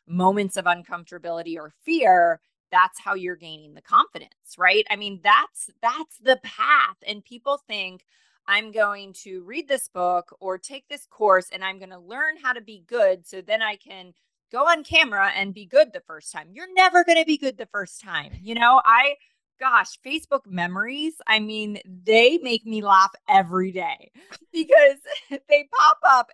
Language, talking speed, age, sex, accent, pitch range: English, 180 wpm, 30-49, female, American, 185-270 Hz